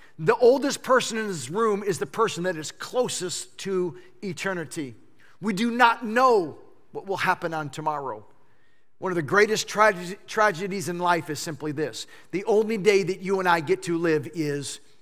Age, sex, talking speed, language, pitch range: 40-59, male, 175 wpm, English, 175-230 Hz